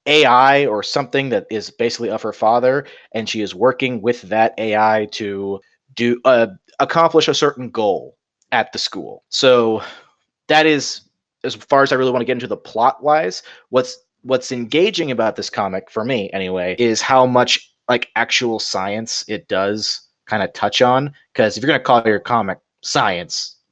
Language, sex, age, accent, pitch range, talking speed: English, male, 30-49, American, 105-130 Hz, 175 wpm